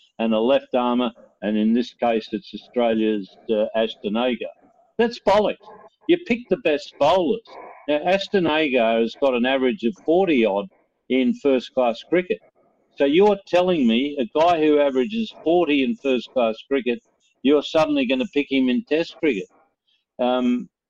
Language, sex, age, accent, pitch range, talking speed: English, male, 60-79, Australian, 120-170 Hz, 145 wpm